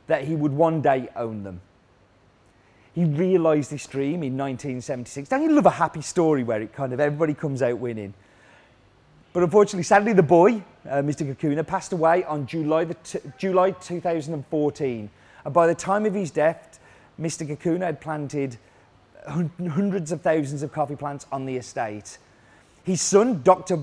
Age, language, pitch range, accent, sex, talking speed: 30-49, English, 125-170 Hz, British, male, 165 wpm